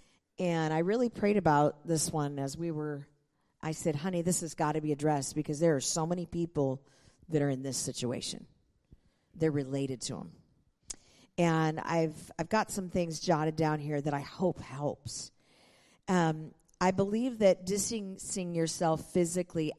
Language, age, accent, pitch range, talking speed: English, 50-69, American, 145-170 Hz, 165 wpm